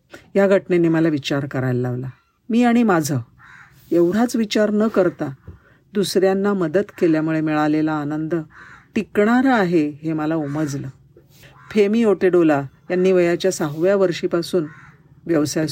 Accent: native